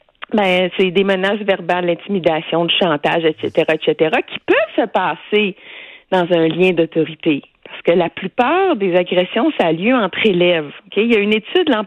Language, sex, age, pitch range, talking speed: French, female, 50-69, 175-250 Hz, 185 wpm